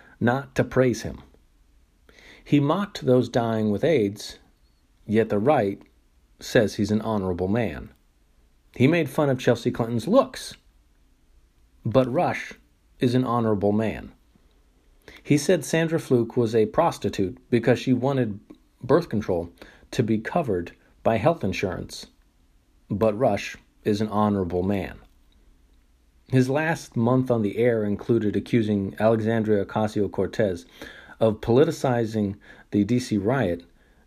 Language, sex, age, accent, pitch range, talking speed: English, male, 40-59, American, 90-125 Hz, 125 wpm